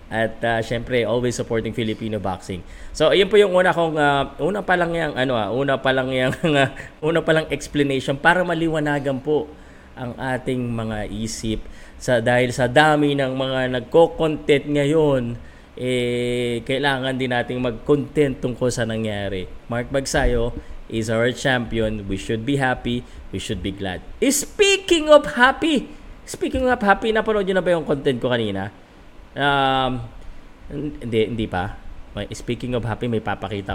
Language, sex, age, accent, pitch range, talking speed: Filipino, male, 20-39, native, 110-150 Hz, 155 wpm